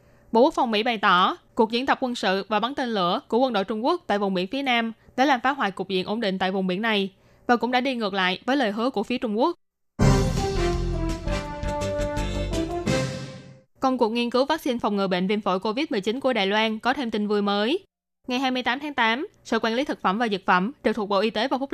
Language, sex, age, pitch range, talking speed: Vietnamese, female, 20-39, 195-255 Hz, 245 wpm